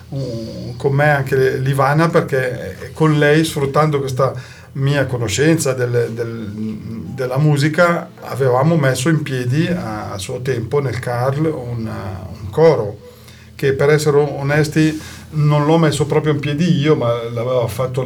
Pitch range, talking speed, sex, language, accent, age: 110-145 Hz, 140 wpm, male, Italian, native, 40-59